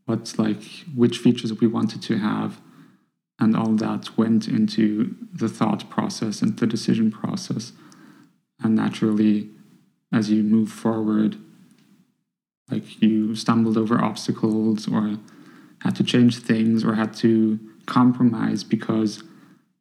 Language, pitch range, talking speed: English, 110-125 Hz, 125 wpm